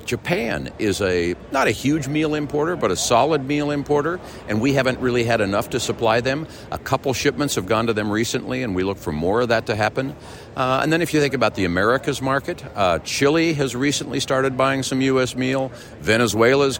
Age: 50-69